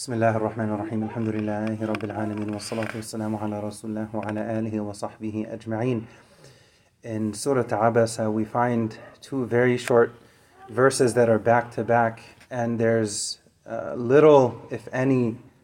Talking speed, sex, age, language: 70 wpm, male, 30-49, English